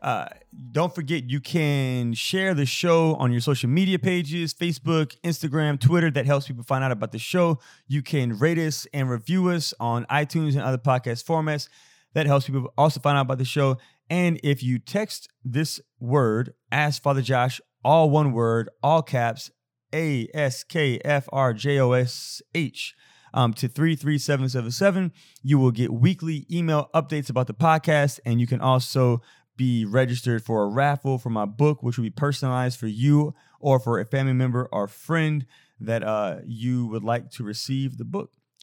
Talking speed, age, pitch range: 185 wpm, 30-49, 125-155 Hz